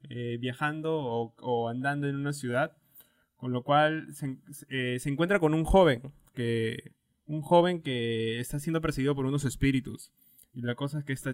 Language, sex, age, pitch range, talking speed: Spanish, male, 20-39, 125-150 Hz, 180 wpm